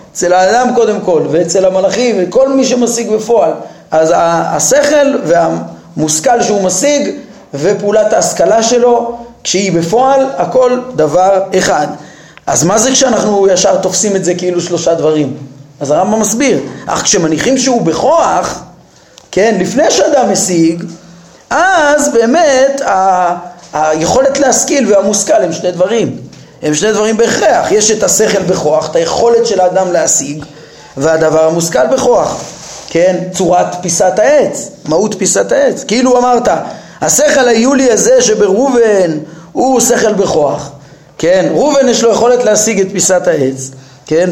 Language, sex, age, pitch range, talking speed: Hebrew, male, 30-49, 175-240 Hz, 130 wpm